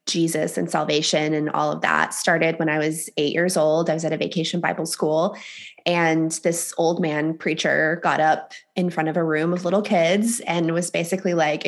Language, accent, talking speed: English, American, 205 wpm